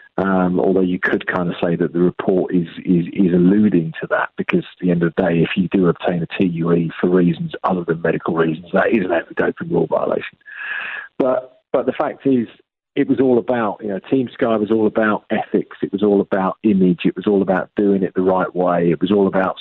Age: 40-59